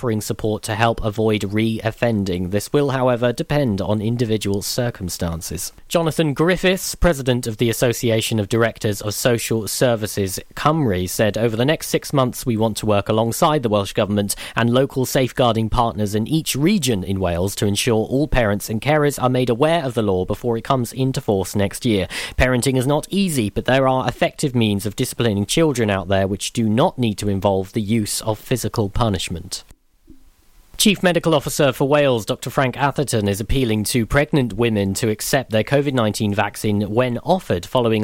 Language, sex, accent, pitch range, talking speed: English, male, British, 105-135 Hz, 175 wpm